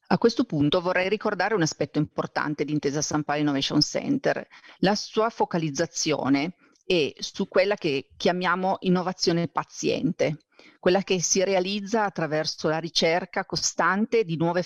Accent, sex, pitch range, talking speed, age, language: native, female, 150-195 Hz, 140 wpm, 40-59, Italian